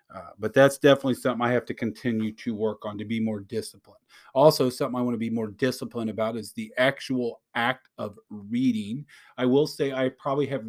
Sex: male